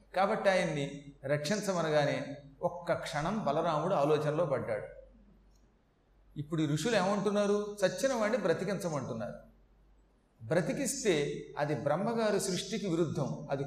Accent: native